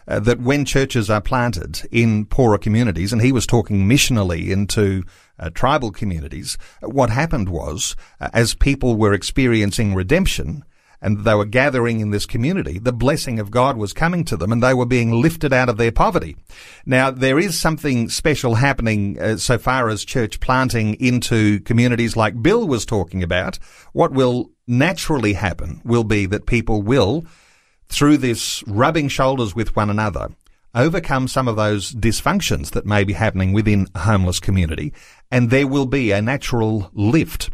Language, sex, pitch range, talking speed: English, male, 105-130 Hz, 170 wpm